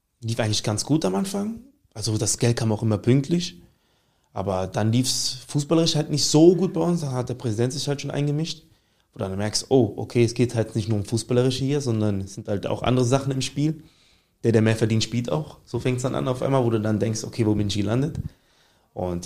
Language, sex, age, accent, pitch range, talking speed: German, male, 20-39, German, 105-130 Hz, 245 wpm